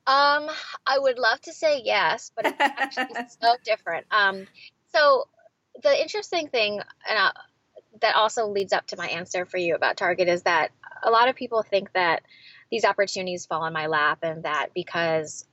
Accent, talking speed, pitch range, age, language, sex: American, 180 wpm, 175-250 Hz, 10-29, English, female